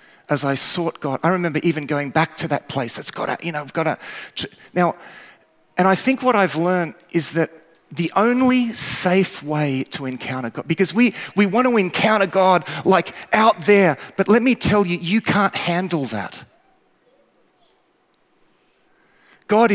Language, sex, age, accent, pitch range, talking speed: English, male, 30-49, Australian, 135-205 Hz, 165 wpm